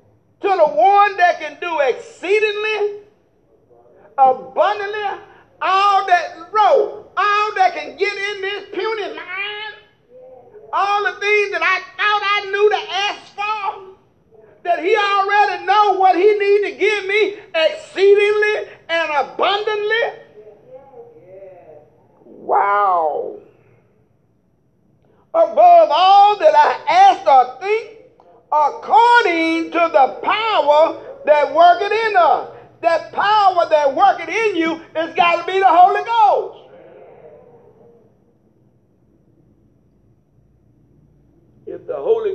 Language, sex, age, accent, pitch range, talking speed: English, male, 50-69, American, 330-425 Hz, 105 wpm